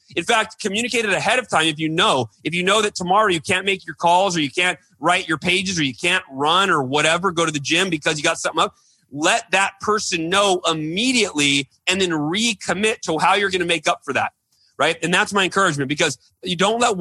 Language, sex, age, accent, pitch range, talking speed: English, male, 30-49, American, 145-195 Hz, 235 wpm